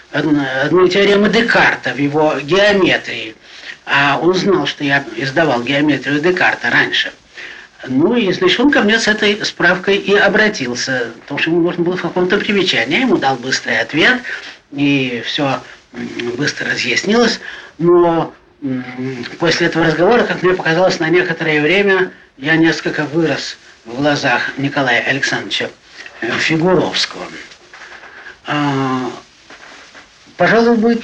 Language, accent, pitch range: Russian, native, 145-210 Hz